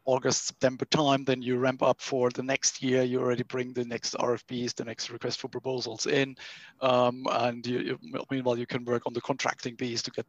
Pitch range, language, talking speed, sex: 125-130 Hz, English, 215 wpm, male